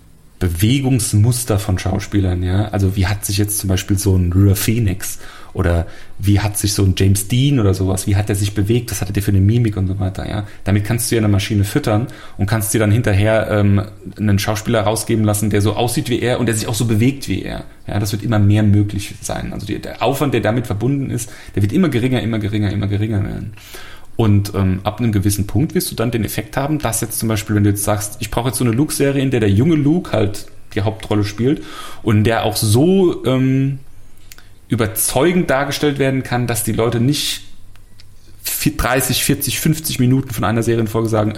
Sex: male